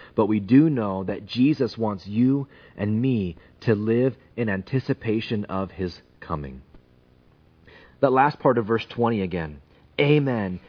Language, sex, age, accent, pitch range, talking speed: English, male, 30-49, American, 95-145 Hz, 140 wpm